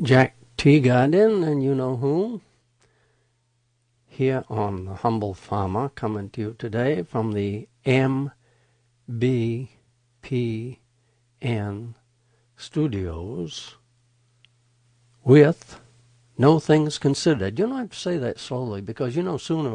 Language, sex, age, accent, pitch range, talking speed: English, male, 60-79, American, 115-155 Hz, 100 wpm